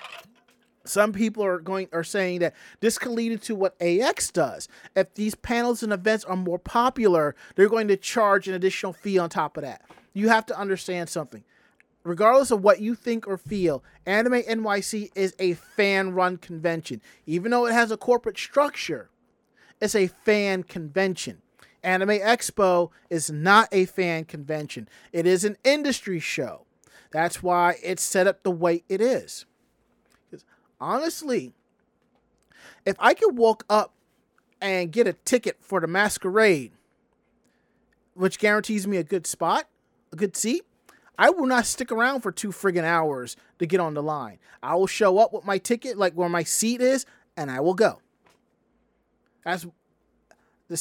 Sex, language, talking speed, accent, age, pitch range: male, English, 160 wpm, American, 30-49, 175-220 Hz